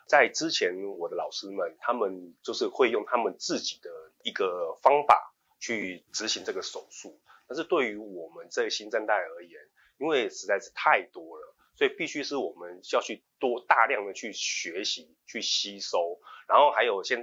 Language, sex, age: Chinese, male, 30-49